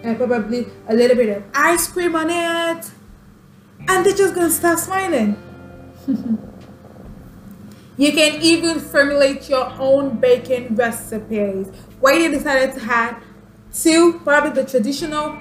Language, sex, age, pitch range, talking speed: English, female, 20-39, 220-295 Hz, 130 wpm